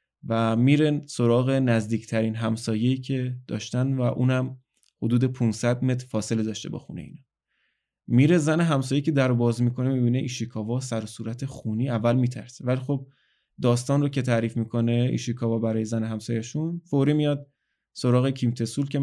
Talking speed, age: 155 wpm, 20-39